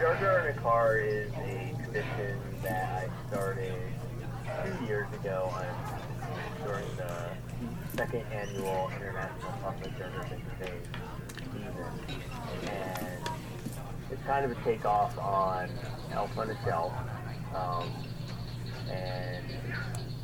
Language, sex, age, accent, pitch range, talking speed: English, male, 30-49, American, 115-125 Hz, 115 wpm